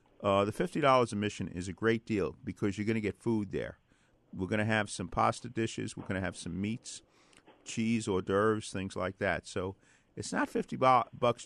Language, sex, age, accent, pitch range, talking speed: English, male, 40-59, American, 95-115 Hz, 220 wpm